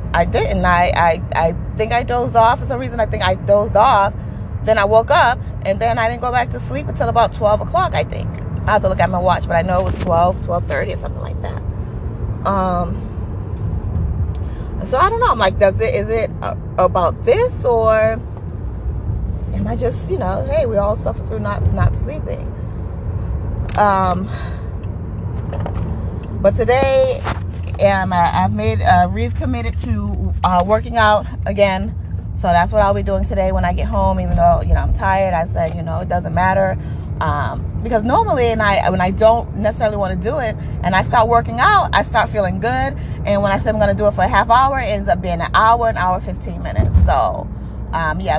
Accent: American